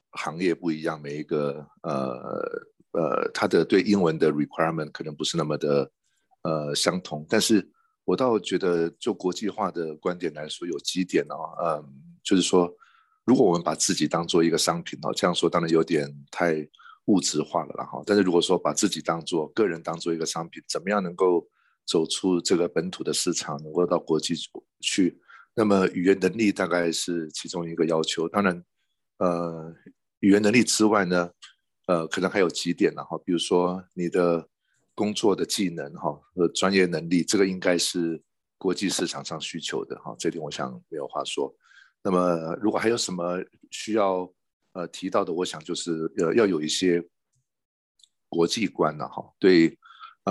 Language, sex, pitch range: Chinese, male, 80-95 Hz